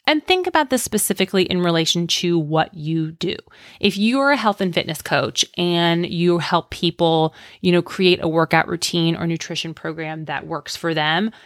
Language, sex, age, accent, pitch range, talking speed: English, female, 30-49, American, 165-200 Hz, 190 wpm